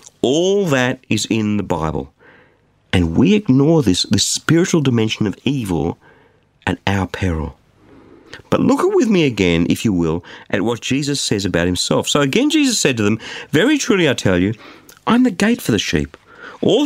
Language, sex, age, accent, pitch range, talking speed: English, male, 50-69, Australian, 95-160 Hz, 180 wpm